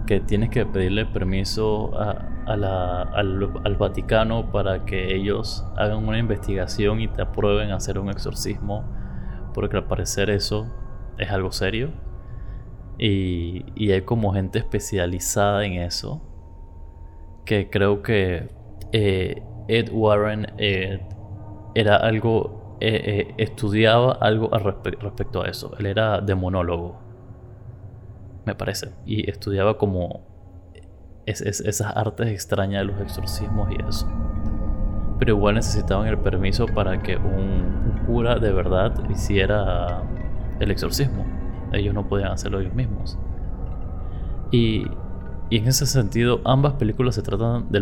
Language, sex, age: Spanish, male, 20-39